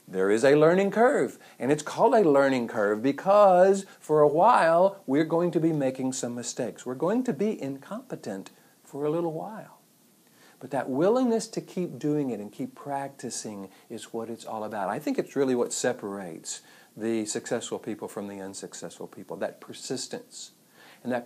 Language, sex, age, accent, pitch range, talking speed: English, male, 50-69, American, 125-175 Hz, 180 wpm